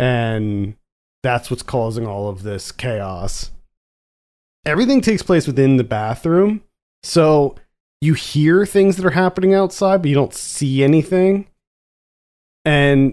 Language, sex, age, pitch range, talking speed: English, male, 30-49, 115-140 Hz, 130 wpm